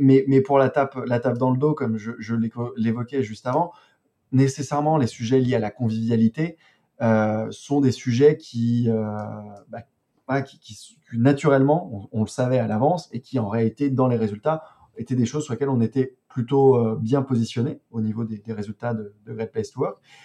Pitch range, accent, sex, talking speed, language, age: 115-140 Hz, French, male, 195 wpm, French, 20-39